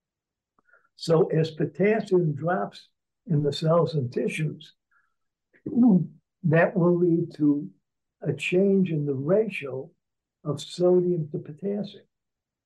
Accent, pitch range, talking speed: American, 150-180 Hz, 105 wpm